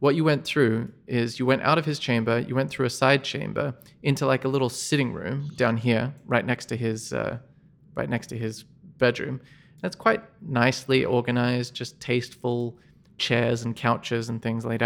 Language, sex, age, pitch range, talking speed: English, male, 20-39, 120-145 Hz, 190 wpm